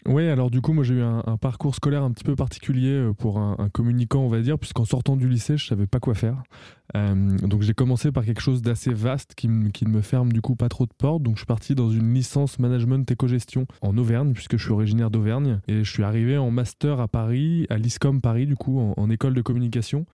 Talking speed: 260 wpm